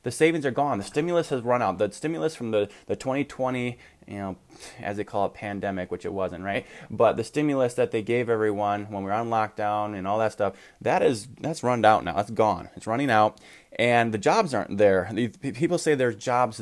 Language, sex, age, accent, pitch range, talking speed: English, male, 20-39, American, 100-125 Hz, 225 wpm